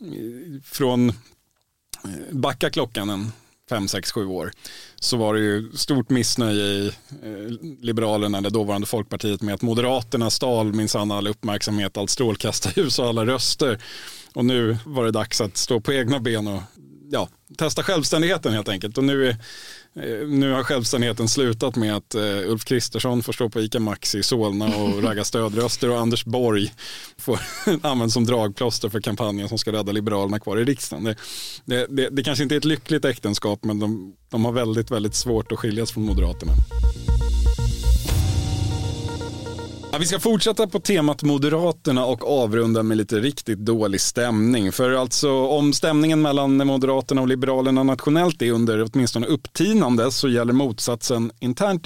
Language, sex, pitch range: Swedish, male, 105-130 Hz